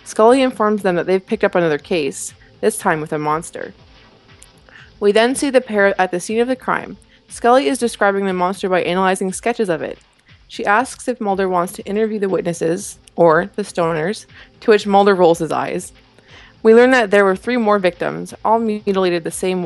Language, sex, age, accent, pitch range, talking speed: English, female, 20-39, American, 170-215 Hz, 200 wpm